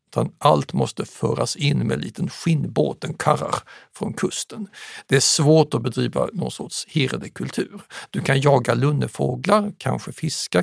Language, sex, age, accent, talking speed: Swedish, male, 60-79, native, 160 wpm